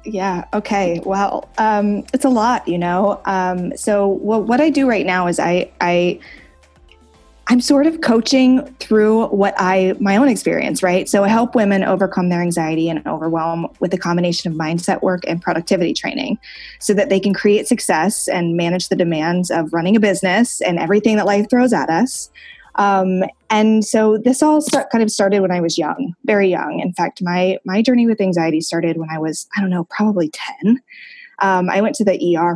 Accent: American